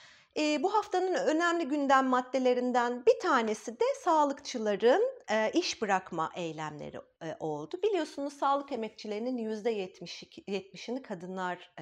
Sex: female